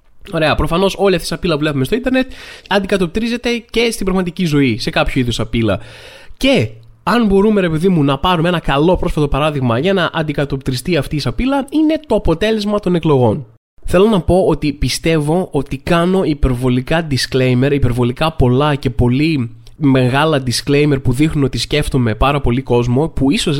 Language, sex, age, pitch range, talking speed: Greek, male, 20-39, 135-195 Hz, 165 wpm